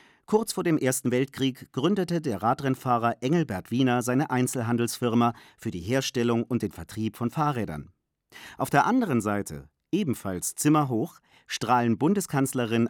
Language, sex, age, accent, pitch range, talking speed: German, male, 40-59, German, 110-140 Hz, 135 wpm